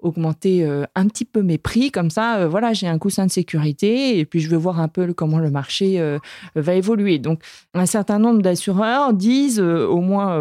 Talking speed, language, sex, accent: 195 wpm, French, female, French